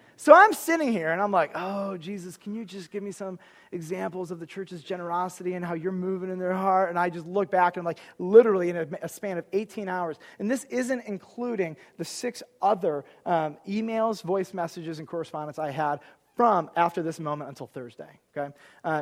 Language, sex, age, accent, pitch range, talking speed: English, male, 30-49, American, 140-200 Hz, 210 wpm